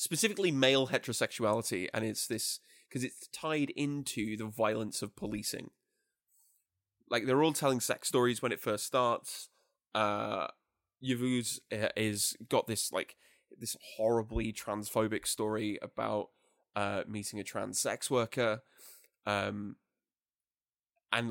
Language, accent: English, British